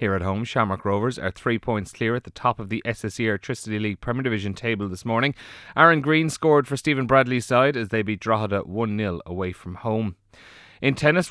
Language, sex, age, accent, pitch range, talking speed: English, male, 30-49, Irish, 100-130 Hz, 205 wpm